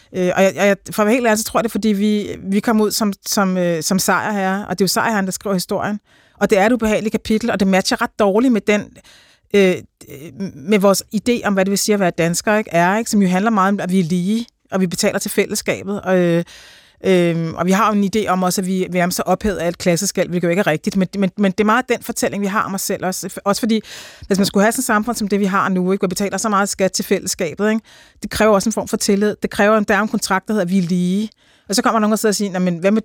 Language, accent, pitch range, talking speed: Danish, native, 180-215 Hz, 295 wpm